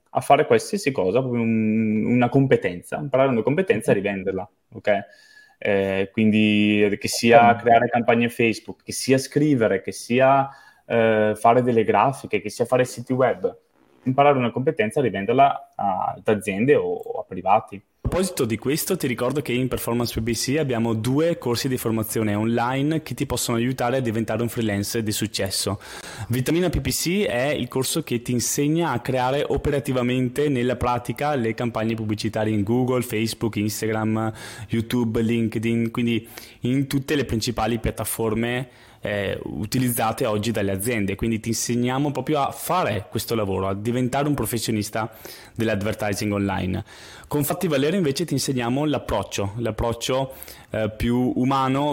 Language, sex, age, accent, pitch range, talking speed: Italian, male, 20-39, native, 110-135 Hz, 150 wpm